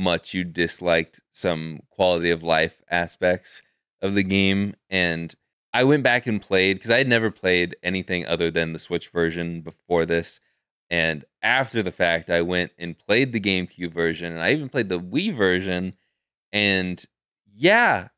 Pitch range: 85-110 Hz